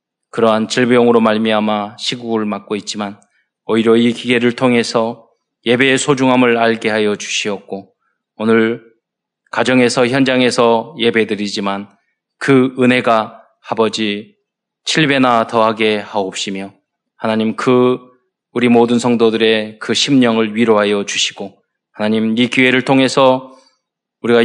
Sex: male